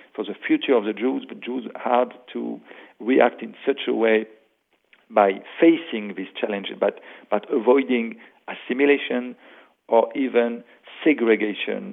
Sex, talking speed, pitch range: male, 130 wpm, 110-125 Hz